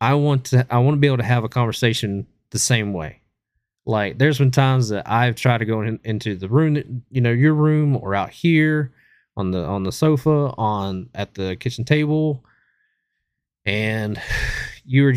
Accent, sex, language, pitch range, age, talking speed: American, male, English, 105-135 Hz, 30-49, 185 wpm